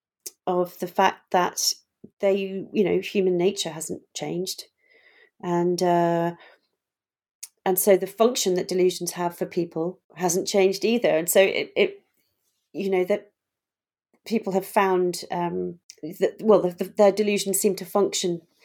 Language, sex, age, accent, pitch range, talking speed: English, female, 40-59, British, 170-200 Hz, 145 wpm